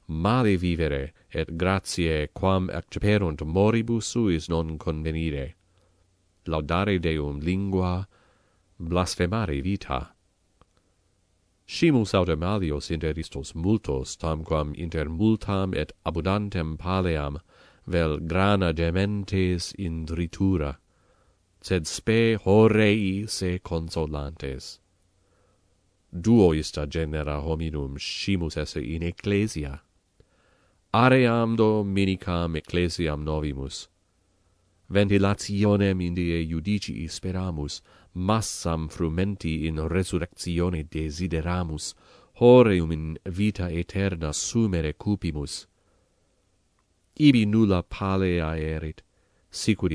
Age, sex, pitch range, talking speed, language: 40-59, male, 80-100 Hz, 80 wpm, English